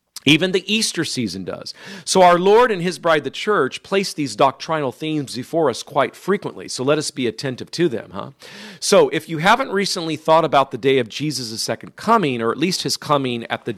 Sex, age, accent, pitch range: male, 40-59, American, 120-165 Hz